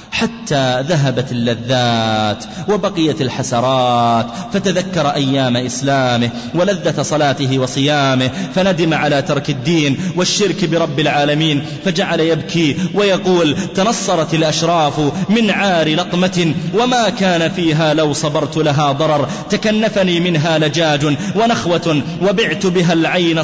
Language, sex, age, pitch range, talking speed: English, male, 30-49, 150-185 Hz, 100 wpm